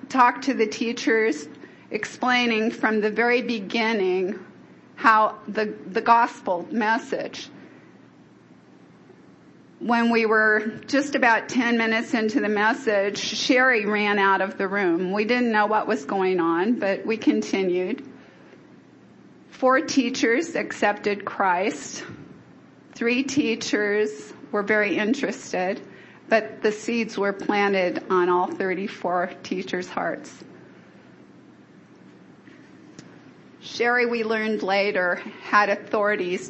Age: 40-59